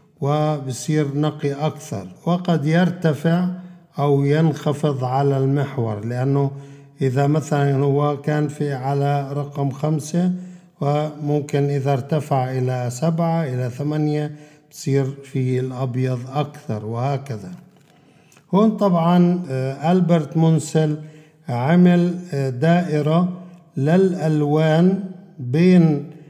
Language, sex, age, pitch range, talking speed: Arabic, male, 50-69, 135-160 Hz, 85 wpm